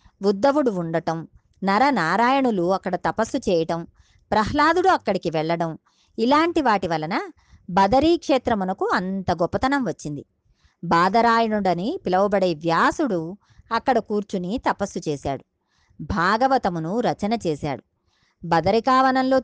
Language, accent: Telugu, native